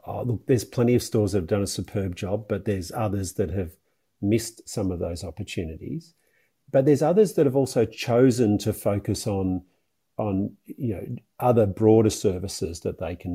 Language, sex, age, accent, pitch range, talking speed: English, male, 40-59, Australian, 100-125 Hz, 185 wpm